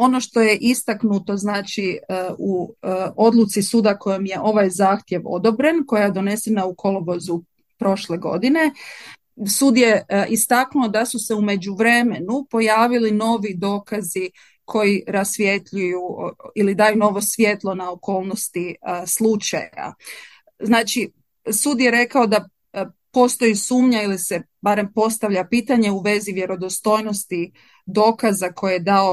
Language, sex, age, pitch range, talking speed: Croatian, female, 30-49, 190-230 Hz, 120 wpm